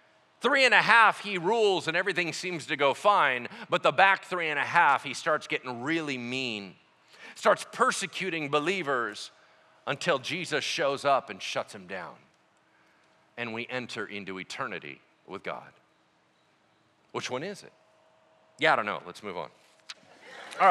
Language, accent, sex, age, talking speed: English, American, male, 40-59, 155 wpm